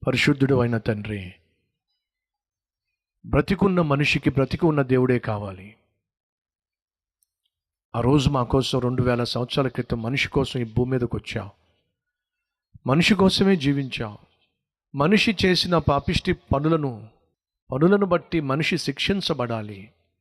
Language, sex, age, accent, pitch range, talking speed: Telugu, male, 50-69, native, 110-160 Hz, 100 wpm